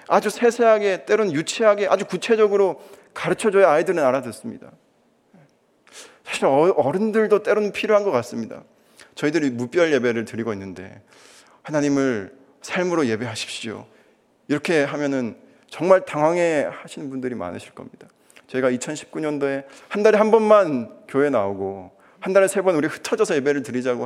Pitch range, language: 120-190 Hz, Korean